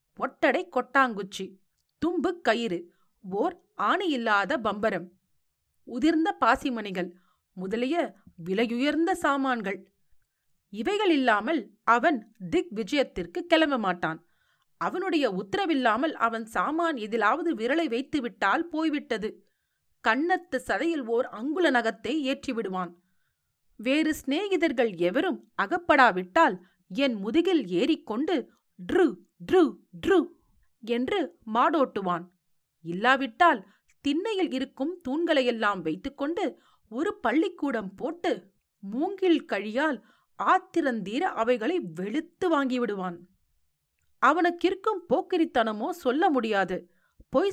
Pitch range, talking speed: 205-325 Hz, 75 wpm